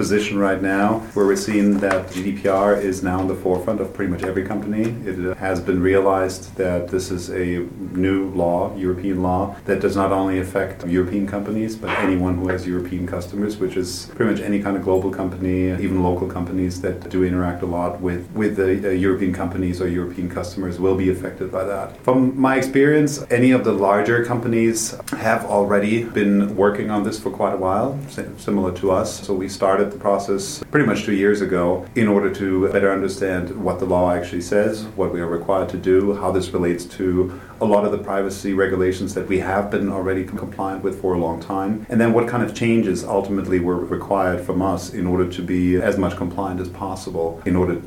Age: 40-59